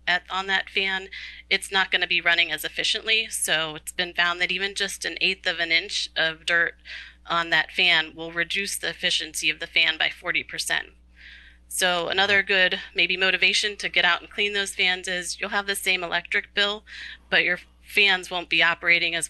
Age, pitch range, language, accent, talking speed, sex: 30-49, 160-185 Hz, English, American, 200 wpm, female